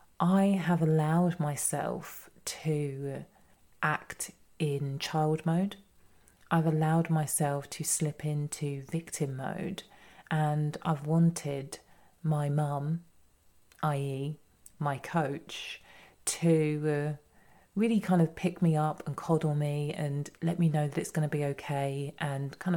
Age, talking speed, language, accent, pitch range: 30-49, 125 wpm, English, British, 145-170 Hz